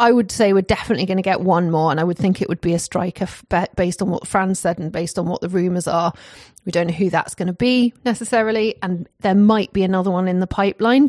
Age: 30-49